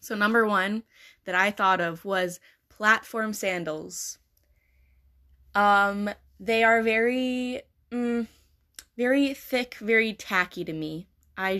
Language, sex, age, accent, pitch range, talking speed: English, female, 10-29, American, 175-220 Hz, 115 wpm